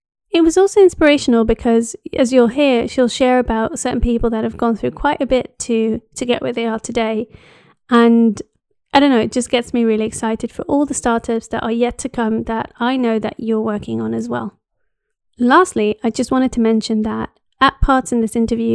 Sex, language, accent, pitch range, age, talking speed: female, English, British, 225-255 Hz, 30-49, 215 wpm